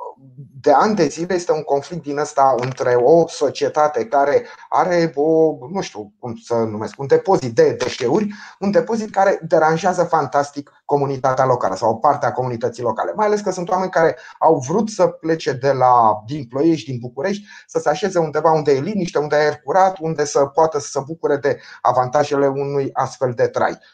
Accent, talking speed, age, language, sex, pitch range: native, 185 wpm, 30-49, Romanian, male, 140-185 Hz